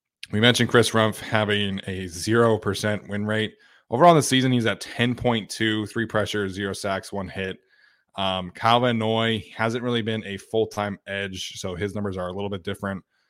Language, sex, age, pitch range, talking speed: English, male, 20-39, 100-120 Hz, 180 wpm